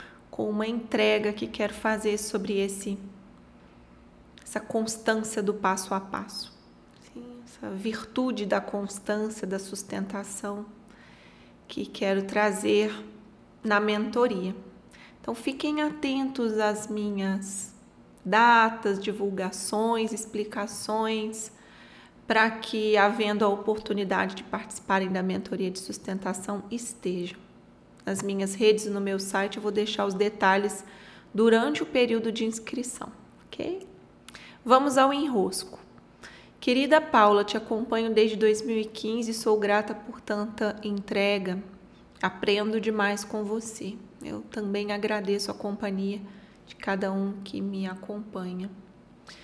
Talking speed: 110 wpm